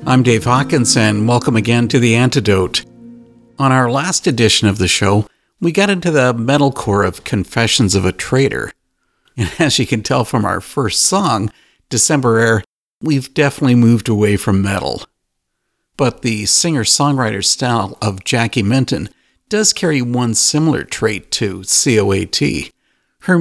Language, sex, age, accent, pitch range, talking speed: English, male, 50-69, American, 105-150 Hz, 150 wpm